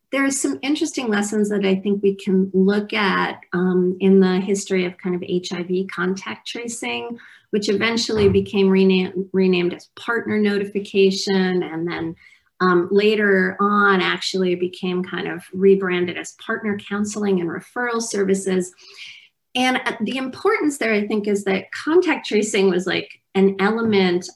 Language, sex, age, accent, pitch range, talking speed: English, female, 30-49, American, 185-215 Hz, 150 wpm